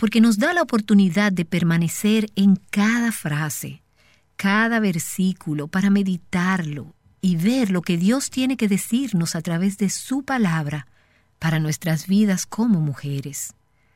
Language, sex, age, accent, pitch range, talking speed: Spanish, female, 50-69, American, 155-225 Hz, 140 wpm